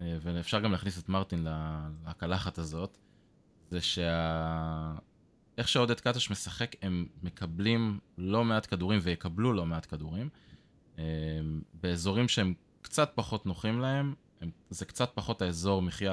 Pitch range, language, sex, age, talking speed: 85-100 Hz, Hebrew, male, 20-39, 125 wpm